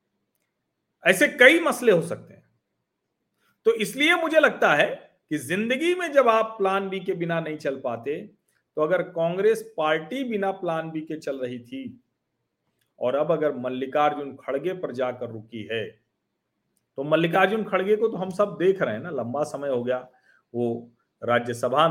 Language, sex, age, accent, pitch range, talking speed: Hindi, male, 40-59, native, 120-185 Hz, 165 wpm